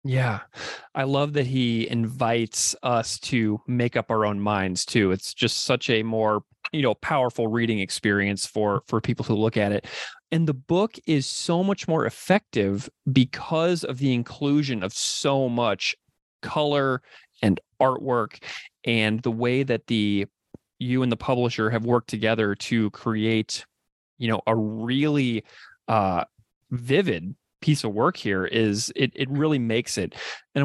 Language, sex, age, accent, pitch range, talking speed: English, male, 30-49, American, 110-135 Hz, 155 wpm